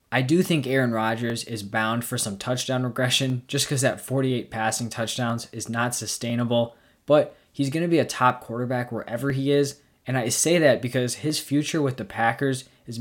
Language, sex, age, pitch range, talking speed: English, male, 20-39, 120-145 Hz, 195 wpm